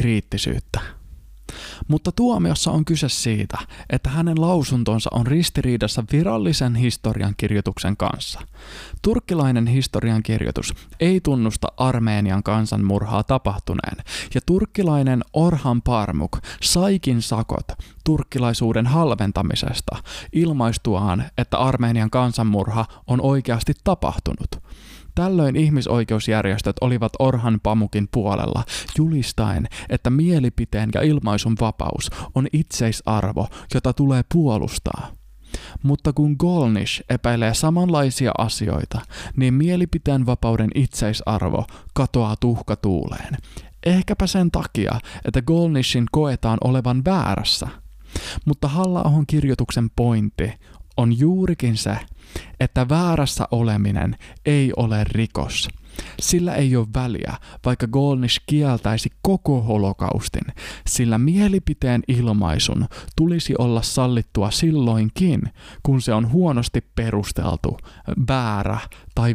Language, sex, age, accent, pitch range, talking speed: Finnish, male, 20-39, native, 105-145 Hz, 95 wpm